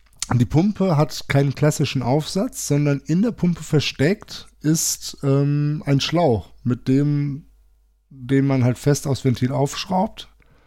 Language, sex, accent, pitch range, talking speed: German, male, German, 125-140 Hz, 130 wpm